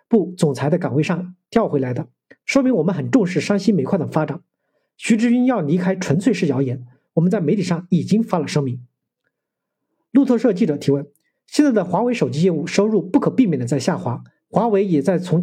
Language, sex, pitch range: Chinese, male, 155-220 Hz